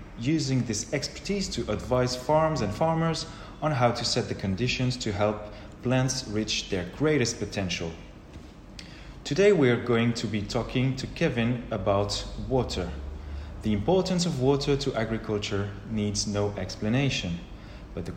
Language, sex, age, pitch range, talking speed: English, male, 30-49, 100-140 Hz, 140 wpm